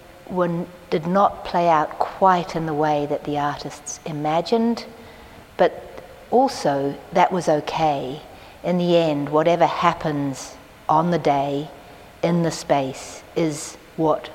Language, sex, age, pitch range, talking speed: English, female, 60-79, 150-175 Hz, 130 wpm